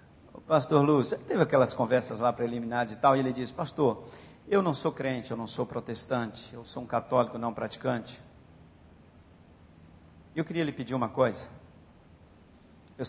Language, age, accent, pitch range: Portuguese, 50-69, Brazilian, 115-145 Hz